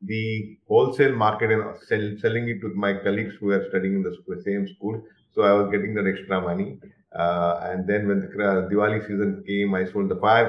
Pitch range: 100-130 Hz